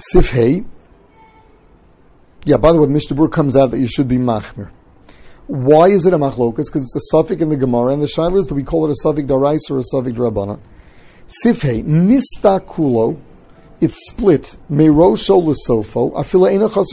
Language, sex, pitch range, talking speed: English, male, 130-170 Hz, 160 wpm